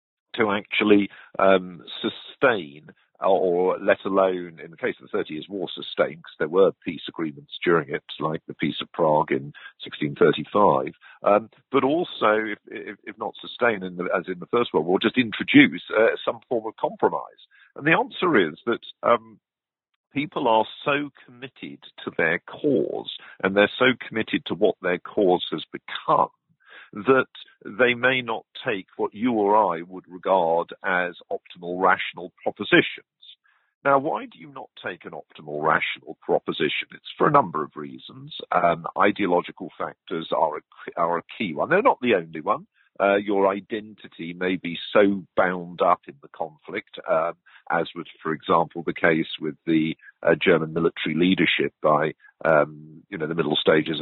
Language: English